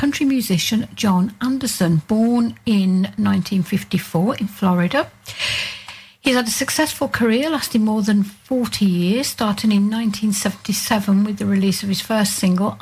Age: 60-79